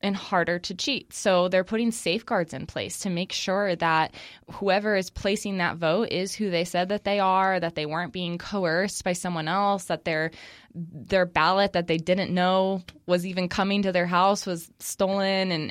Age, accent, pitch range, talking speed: 20-39, American, 170-200 Hz, 195 wpm